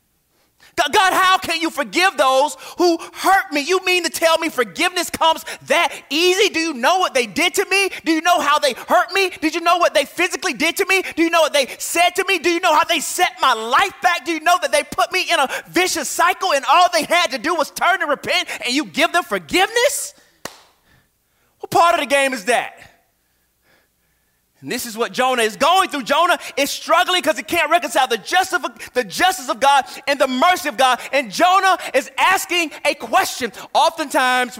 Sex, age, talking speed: male, 30-49, 215 wpm